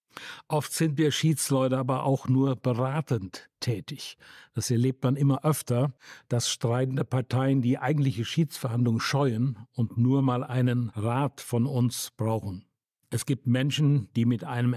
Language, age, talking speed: German, 60-79, 140 wpm